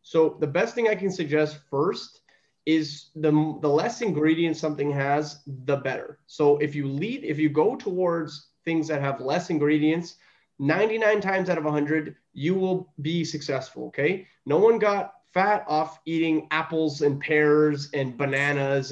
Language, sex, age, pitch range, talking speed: English, male, 30-49, 145-180 Hz, 160 wpm